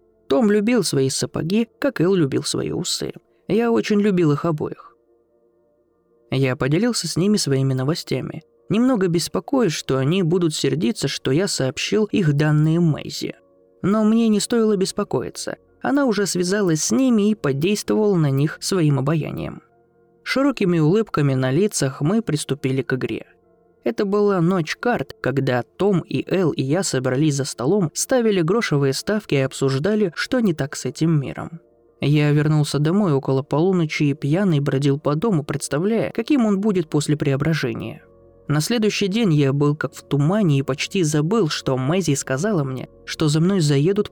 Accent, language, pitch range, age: native, Russian, 135-190 Hz, 20-39